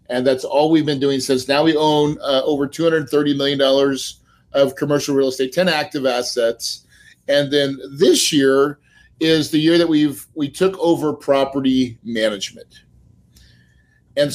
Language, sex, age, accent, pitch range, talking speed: English, male, 40-59, American, 135-165 Hz, 165 wpm